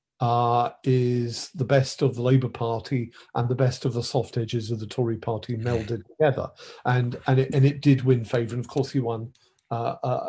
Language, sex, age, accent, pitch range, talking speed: English, male, 50-69, British, 120-135 Hz, 205 wpm